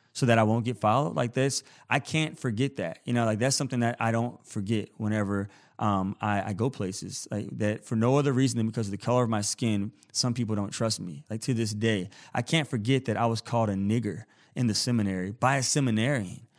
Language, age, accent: English, 20-39, American